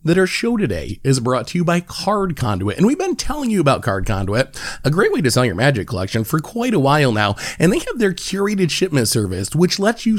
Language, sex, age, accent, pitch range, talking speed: English, male, 30-49, American, 125-190 Hz, 245 wpm